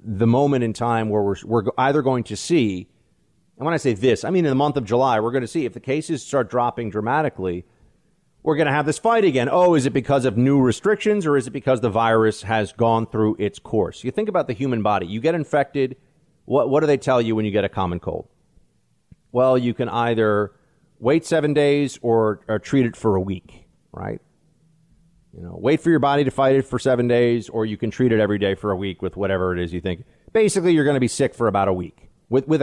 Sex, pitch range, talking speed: male, 105-145 Hz, 245 wpm